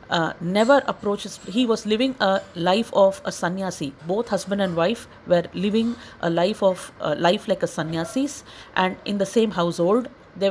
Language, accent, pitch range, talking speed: English, Indian, 180-215 Hz, 175 wpm